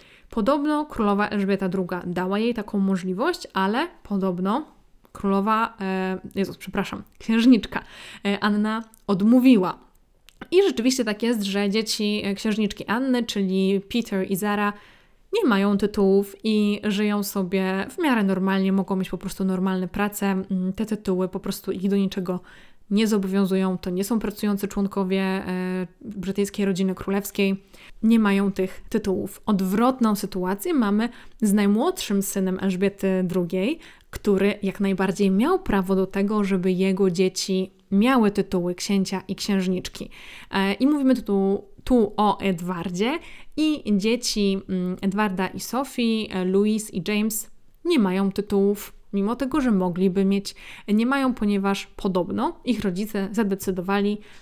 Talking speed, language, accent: 130 wpm, Polish, native